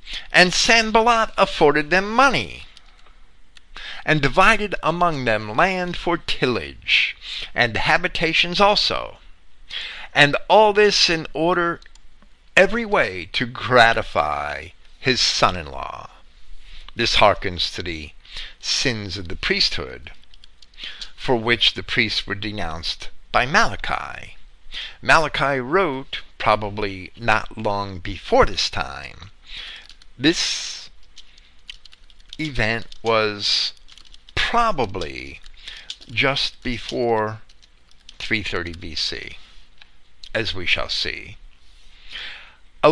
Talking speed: 90 wpm